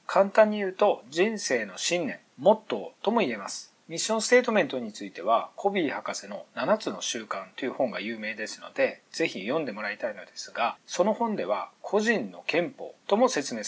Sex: male